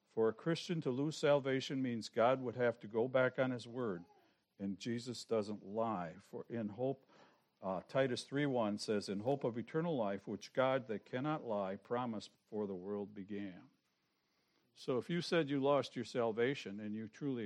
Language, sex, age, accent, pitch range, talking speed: English, male, 60-79, American, 105-140 Hz, 185 wpm